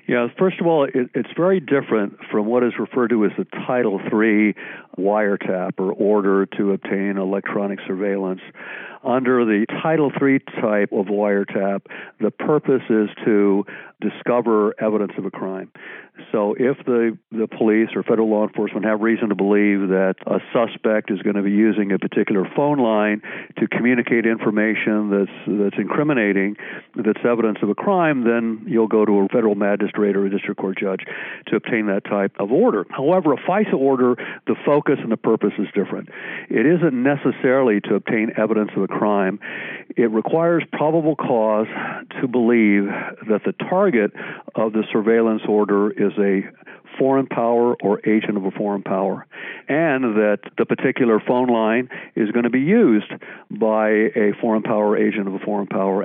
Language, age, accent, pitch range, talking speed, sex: English, 60-79, American, 100-120 Hz, 170 wpm, male